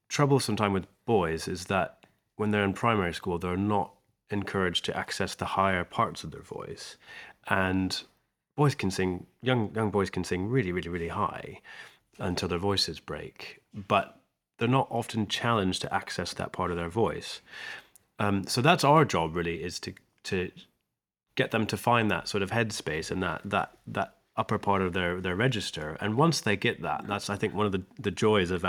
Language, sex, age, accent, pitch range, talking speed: English, male, 30-49, British, 90-115 Hz, 190 wpm